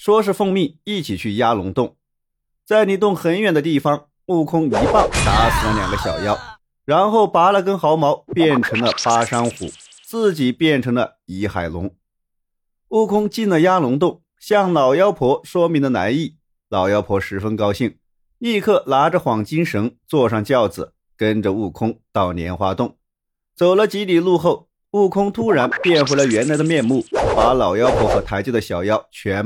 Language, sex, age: Chinese, male, 30-49